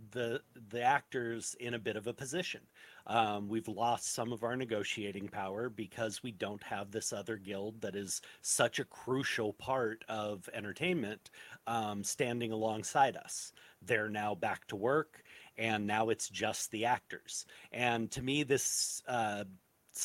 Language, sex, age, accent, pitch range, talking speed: English, male, 40-59, American, 110-130 Hz, 155 wpm